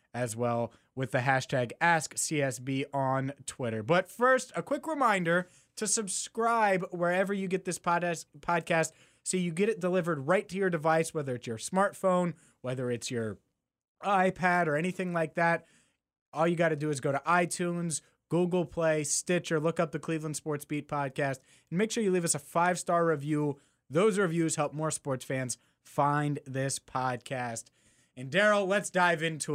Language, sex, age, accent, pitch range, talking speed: English, male, 30-49, American, 145-205 Hz, 170 wpm